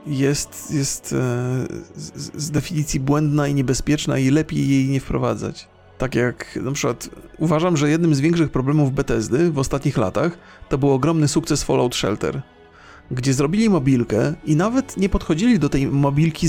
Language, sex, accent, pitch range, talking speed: Polish, male, native, 125-170 Hz, 160 wpm